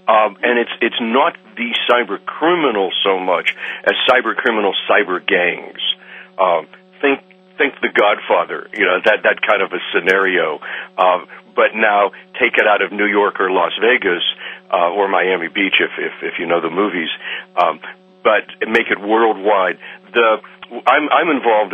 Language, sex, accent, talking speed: English, male, American, 165 wpm